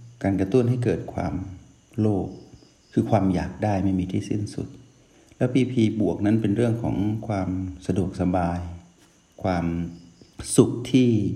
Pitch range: 95-115 Hz